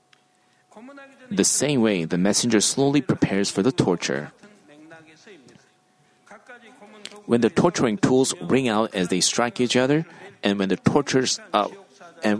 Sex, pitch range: male, 105-150 Hz